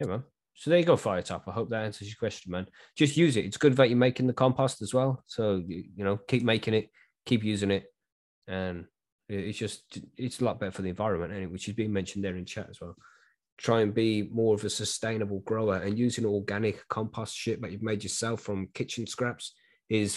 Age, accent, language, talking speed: 20-39, British, English, 225 wpm